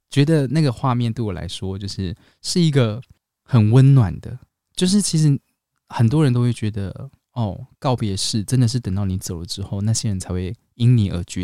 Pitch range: 100-130 Hz